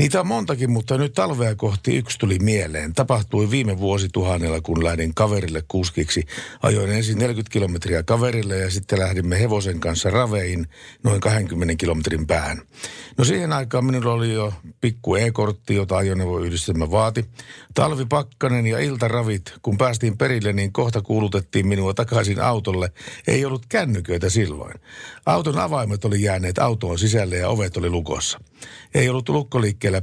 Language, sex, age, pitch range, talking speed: Finnish, male, 60-79, 95-120 Hz, 145 wpm